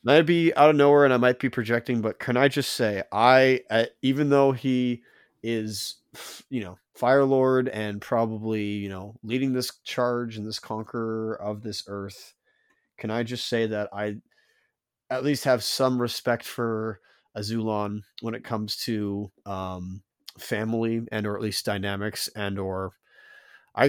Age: 30-49